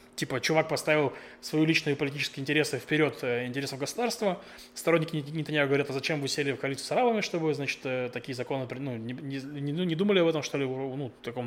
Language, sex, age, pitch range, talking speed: Russian, male, 20-39, 130-155 Hz, 210 wpm